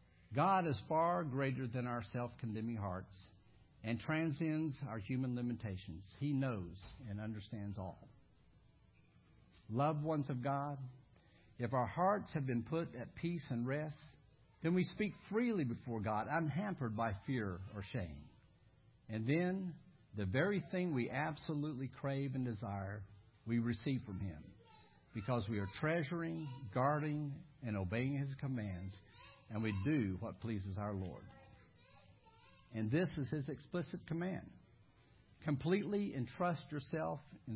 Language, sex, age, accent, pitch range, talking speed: English, male, 60-79, American, 105-150 Hz, 135 wpm